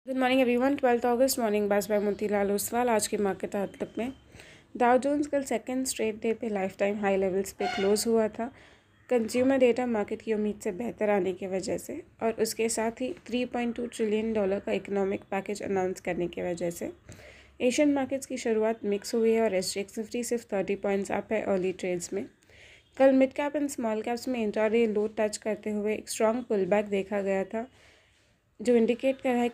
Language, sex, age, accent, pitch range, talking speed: Hindi, female, 20-39, native, 205-245 Hz, 205 wpm